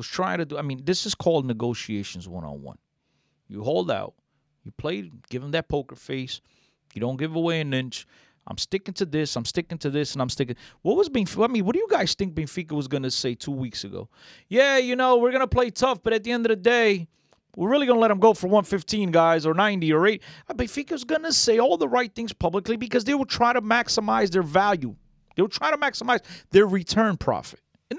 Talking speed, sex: 240 wpm, male